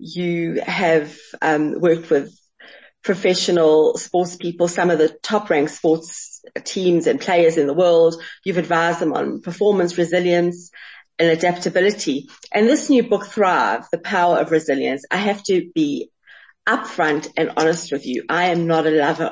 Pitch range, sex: 160-195 Hz, female